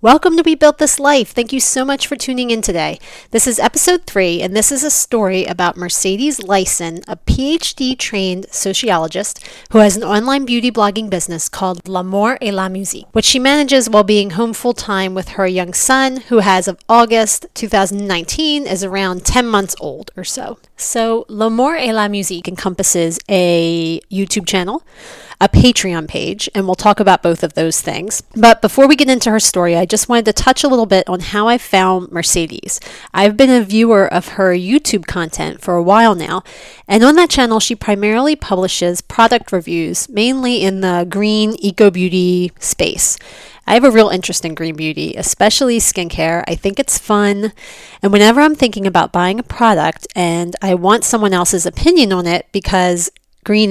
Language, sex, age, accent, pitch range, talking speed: English, female, 30-49, American, 185-235 Hz, 185 wpm